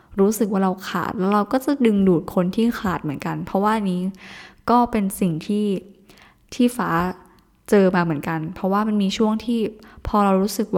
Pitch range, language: 180-215 Hz, Thai